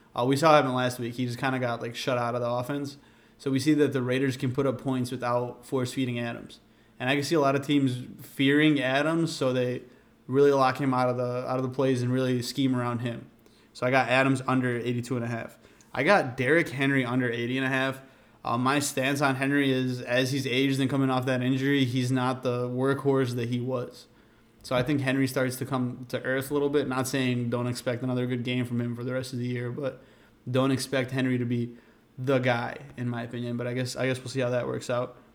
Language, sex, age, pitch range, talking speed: English, male, 20-39, 120-135 Hz, 245 wpm